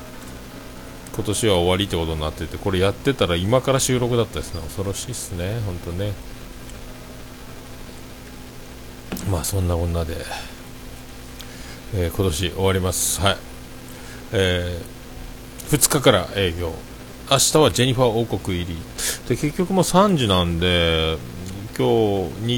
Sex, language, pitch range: male, Japanese, 85-120 Hz